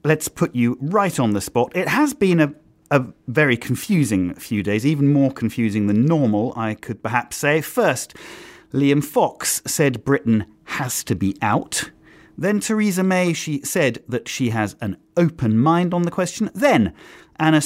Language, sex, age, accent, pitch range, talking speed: English, male, 40-59, British, 110-155 Hz, 170 wpm